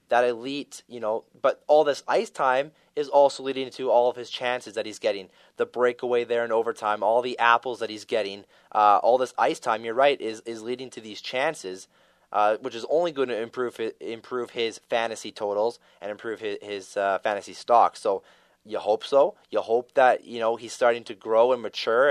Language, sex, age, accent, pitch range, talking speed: English, male, 20-39, American, 110-135 Hz, 210 wpm